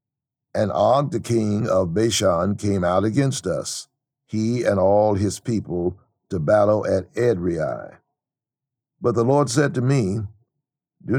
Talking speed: 140 wpm